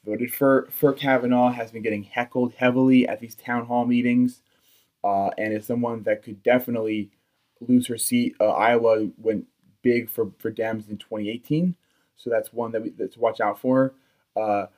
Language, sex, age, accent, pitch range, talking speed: English, male, 20-39, American, 110-130 Hz, 180 wpm